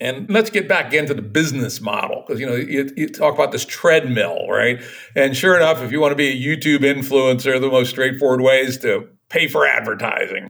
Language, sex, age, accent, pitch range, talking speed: English, male, 60-79, American, 125-155 Hz, 215 wpm